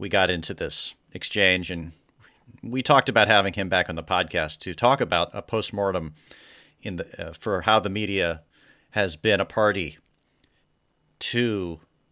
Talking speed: 160 wpm